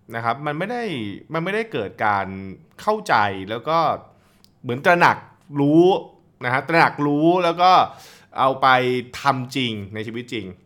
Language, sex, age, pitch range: Thai, male, 20-39, 125-185 Hz